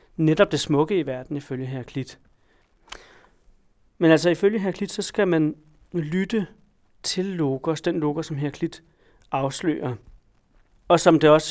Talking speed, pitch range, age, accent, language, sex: 150 wpm, 140-165 Hz, 40-59, native, Danish, male